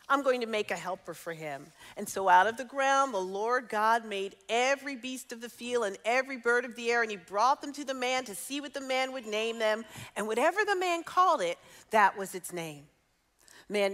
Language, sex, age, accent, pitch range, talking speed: English, female, 40-59, American, 195-300 Hz, 235 wpm